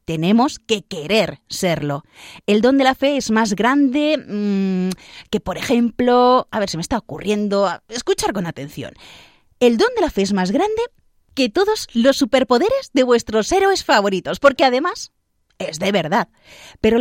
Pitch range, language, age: 190-270 Hz, Spanish, 30-49